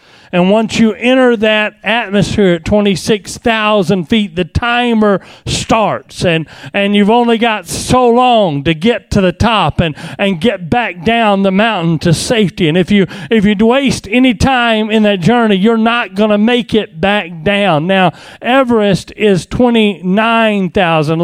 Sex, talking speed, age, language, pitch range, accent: male, 155 wpm, 40-59, English, 195-235 Hz, American